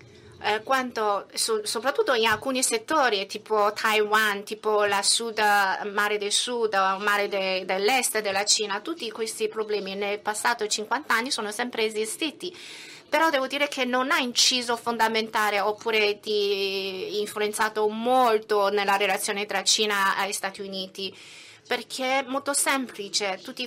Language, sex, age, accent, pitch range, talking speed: Italian, female, 30-49, native, 200-245 Hz, 125 wpm